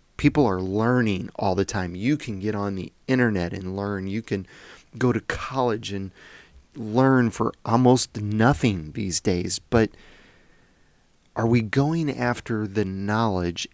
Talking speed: 145 wpm